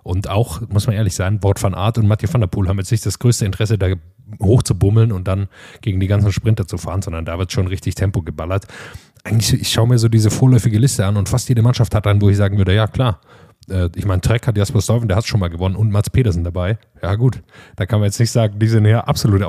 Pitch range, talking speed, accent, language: 95-115 Hz, 265 wpm, German, German